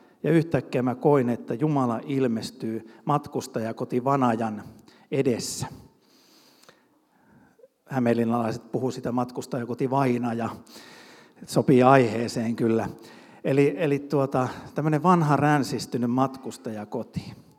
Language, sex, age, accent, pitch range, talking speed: Finnish, male, 50-69, native, 120-150 Hz, 90 wpm